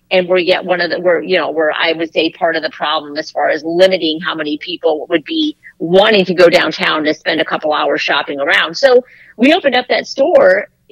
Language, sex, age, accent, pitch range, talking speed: English, female, 40-59, American, 170-210 Hz, 235 wpm